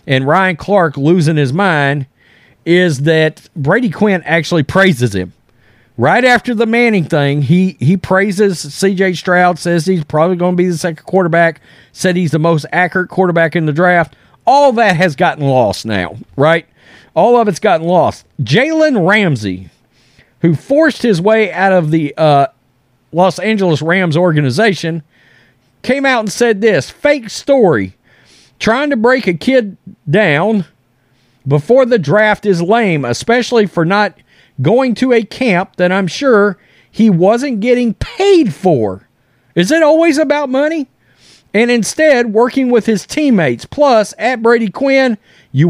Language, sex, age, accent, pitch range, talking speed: English, male, 40-59, American, 150-225 Hz, 155 wpm